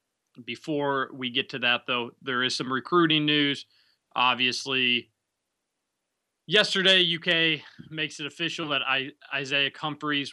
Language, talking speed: English, 120 wpm